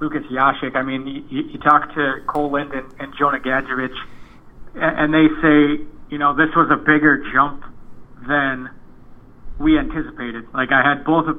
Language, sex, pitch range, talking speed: English, male, 135-155 Hz, 165 wpm